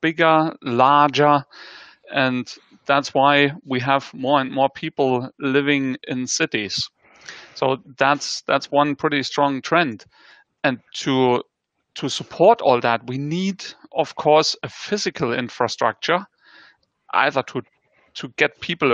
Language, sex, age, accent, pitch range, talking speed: English, male, 40-59, German, 130-160 Hz, 125 wpm